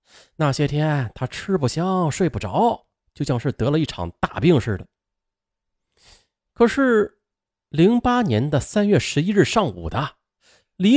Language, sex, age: Chinese, male, 30-49